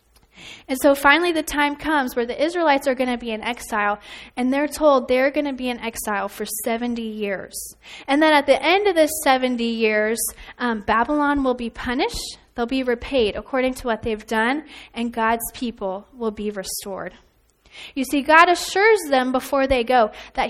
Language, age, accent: English, 10-29, American